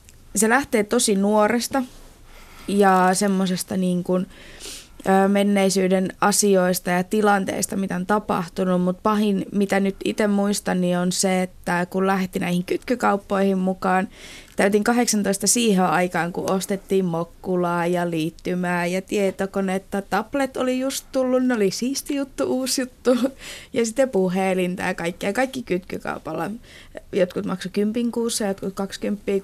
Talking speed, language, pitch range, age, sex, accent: 130 wpm, Finnish, 190-225 Hz, 20-39, female, native